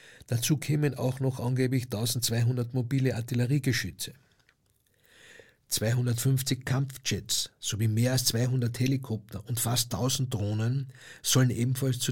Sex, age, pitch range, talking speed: male, 60-79, 110-140 Hz, 110 wpm